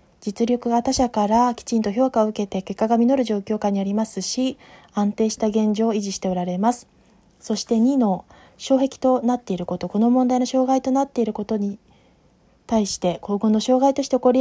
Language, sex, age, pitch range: Japanese, female, 20-39, 210-255 Hz